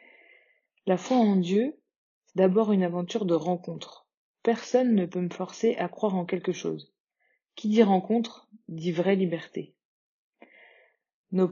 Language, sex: French, female